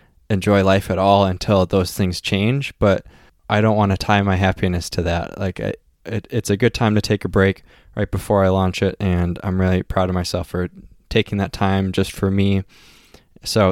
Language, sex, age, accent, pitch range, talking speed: English, male, 20-39, American, 95-110 Hz, 200 wpm